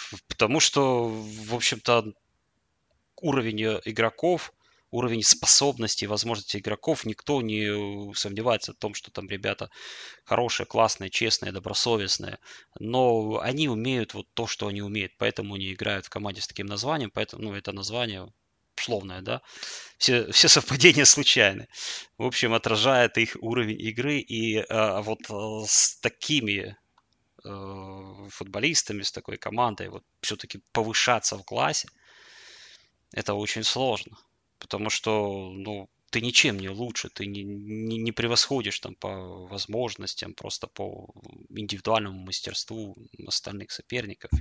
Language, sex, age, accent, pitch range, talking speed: Russian, male, 20-39, native, 100-120 Hz, 120 wpm